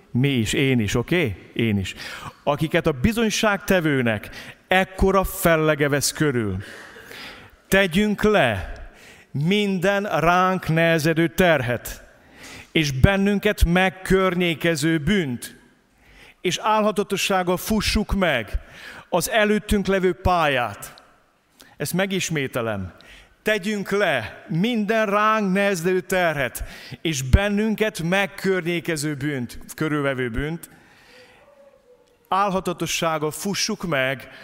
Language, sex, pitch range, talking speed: Hungarian, male, 150-205 Hz, 85 wpm